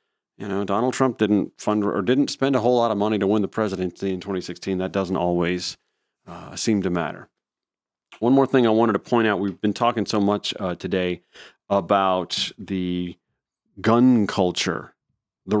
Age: 40-59